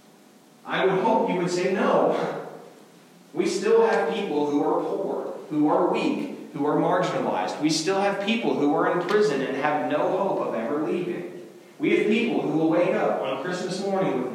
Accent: American